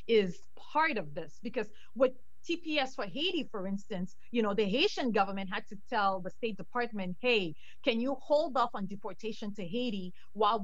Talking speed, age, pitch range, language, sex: 180 wpm, 30-49, 200-265 Hz, English, female